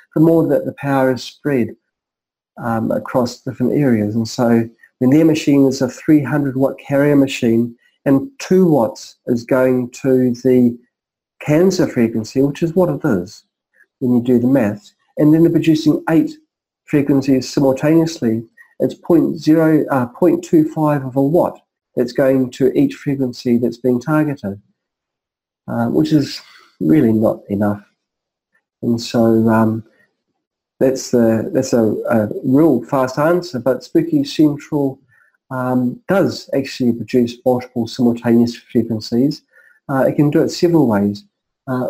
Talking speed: 145 wpm